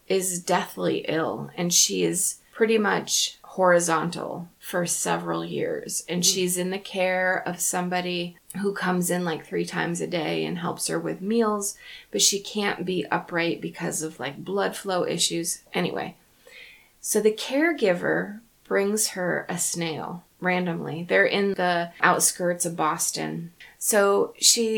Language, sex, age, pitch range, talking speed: English, female, 20-39, 175-215 Hz, 145 wpm